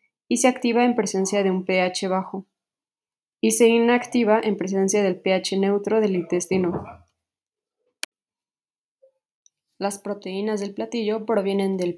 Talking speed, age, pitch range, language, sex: 125 wpm, 20-39, 195-230 Hz, Spanish, female